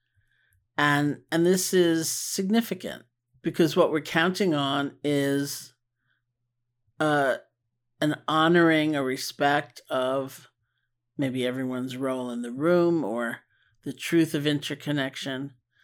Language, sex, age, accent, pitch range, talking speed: English, male, 50-69, American, 125-150 Hz, 105 wpm